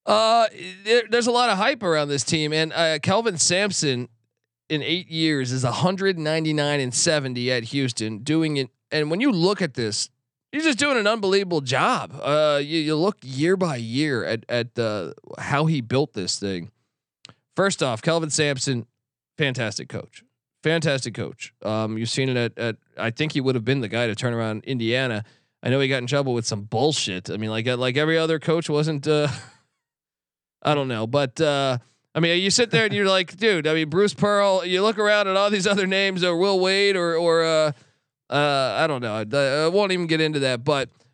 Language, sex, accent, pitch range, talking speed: English, male, American, 130-170 Hz, 205 wpm